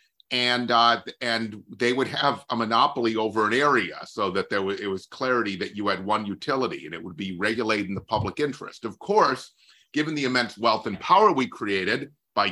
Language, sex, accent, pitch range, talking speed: English, male, American, 100-125 Hz, 205 wpm